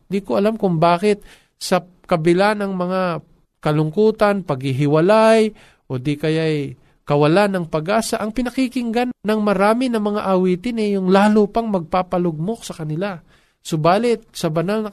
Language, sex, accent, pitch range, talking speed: Filipino, male, native, 150-200 Hz, 140 wpm